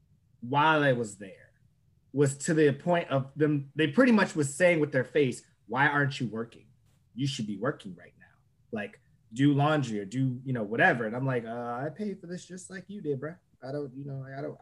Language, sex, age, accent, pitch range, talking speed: English, male, 20-39, American, 125-155 Hz, 225 wpm